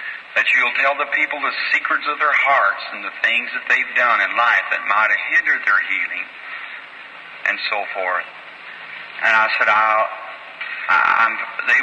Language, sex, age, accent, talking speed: English, male, 50-69, American, 170 wpm